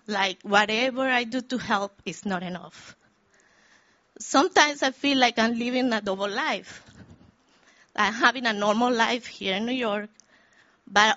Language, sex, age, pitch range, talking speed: English, female, 30-49, 200-245 Hz, 150 wpm